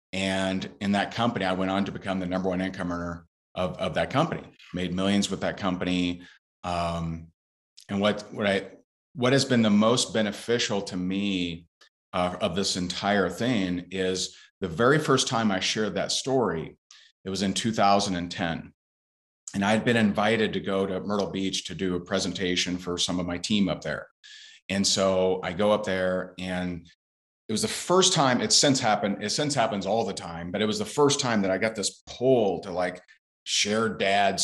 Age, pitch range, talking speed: 40-59, 90-105 Hz, 190 wpm